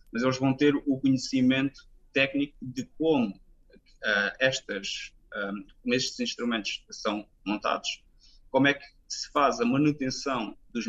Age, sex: 20-39, male